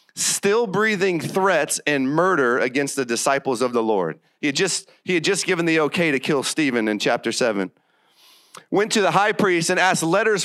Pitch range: 135-195 Hz